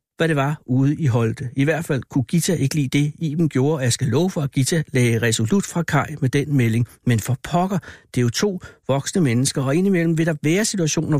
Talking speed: 235 wpm